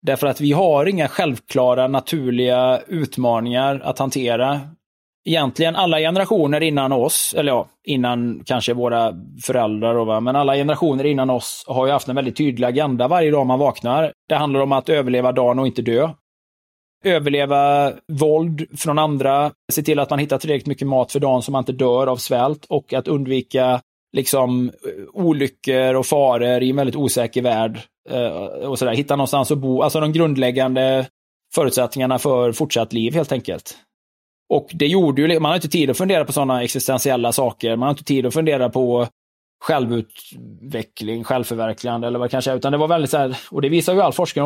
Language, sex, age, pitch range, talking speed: English, male, 20-39, 125-150 Hz, 180 wpm